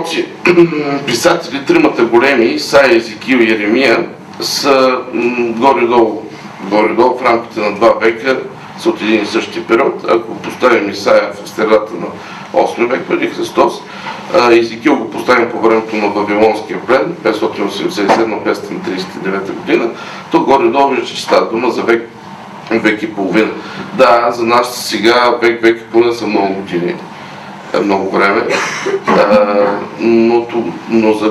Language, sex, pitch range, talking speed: Bulgarian, male, 110-150 Hz, 130 wpm